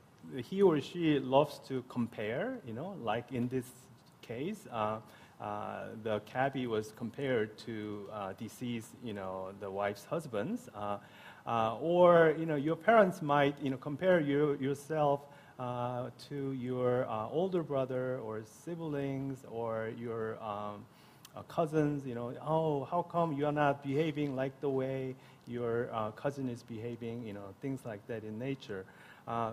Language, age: English, 30-49